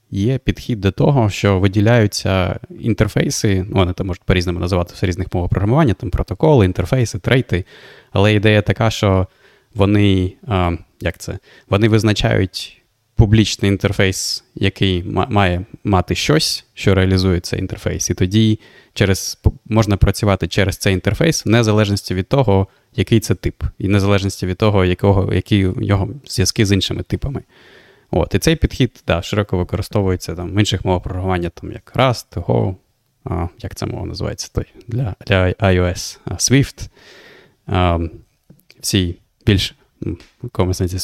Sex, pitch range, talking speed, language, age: male, 95-115 Hz, 135 wpm, Ukrainian, 20-39